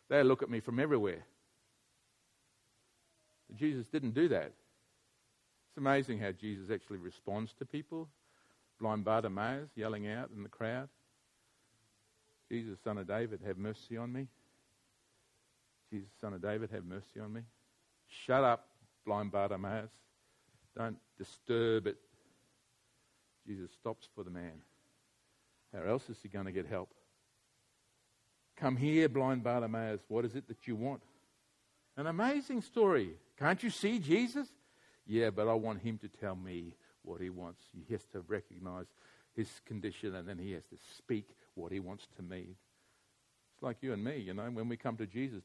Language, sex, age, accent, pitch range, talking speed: English, male, 50-69, Australian, 105-130 Hz, 155 wpm